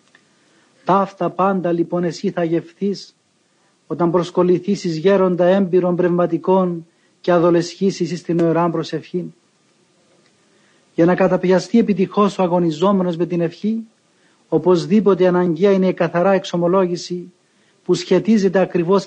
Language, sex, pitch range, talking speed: Greek, male, 175-190 Hz, 105 wpm